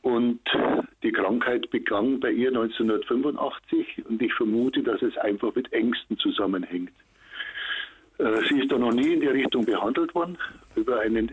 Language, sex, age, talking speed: German, male, 60-79, 155 wpm